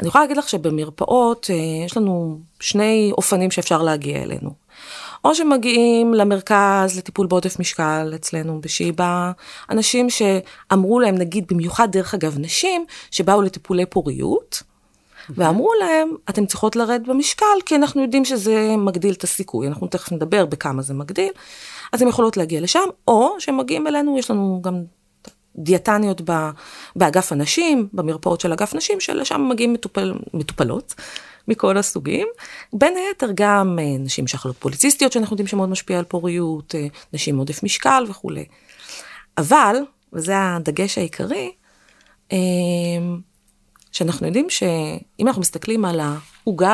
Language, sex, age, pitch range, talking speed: Hebrew, female, 30-49, 170-235 Hz, 130 wpm